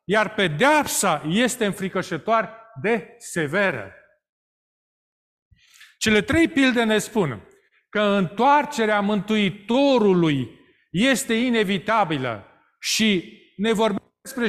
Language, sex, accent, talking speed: Romanian, male, native, 85 wpm